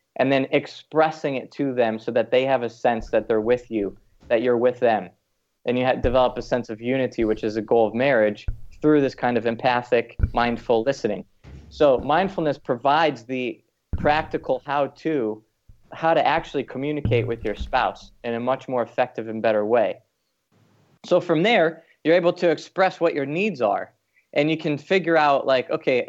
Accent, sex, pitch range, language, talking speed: American, male, 120-150 Hz, English, 185 wpm